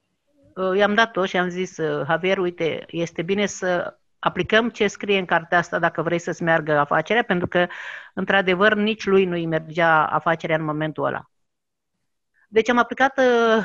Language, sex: Romanian, female